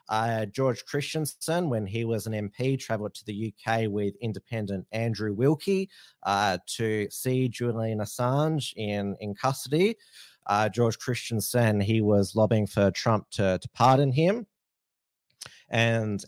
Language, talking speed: English, 135 wpm